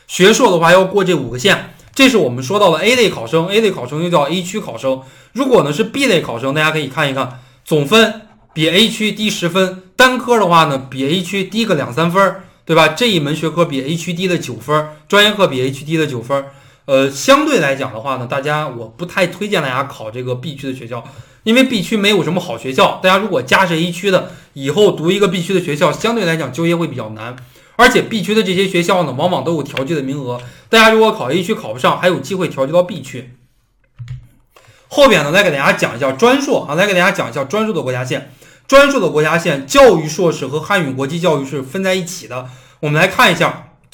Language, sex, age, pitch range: Chinese, male, 20-39, 140-200 Hz